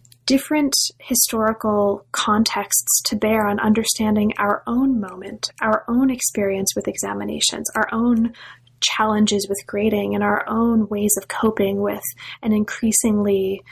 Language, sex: English, female